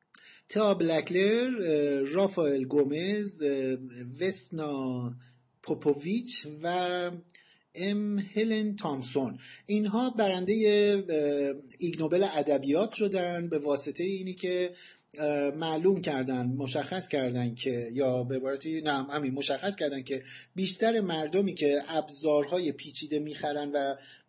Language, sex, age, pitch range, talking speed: Persian, male, 50-69, 145-190 Hz, 90 wpm